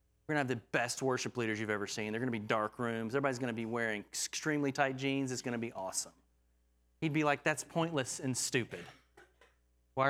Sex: male